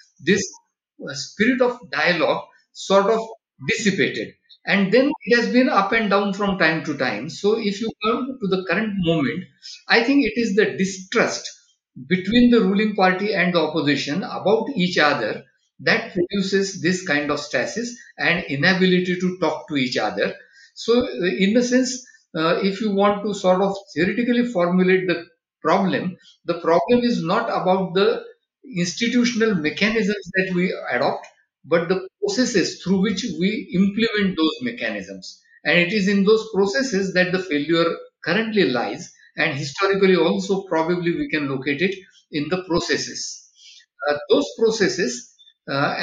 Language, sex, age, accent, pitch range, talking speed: English, male, 60-79, Indian, 170-225 Hz, 155 wpm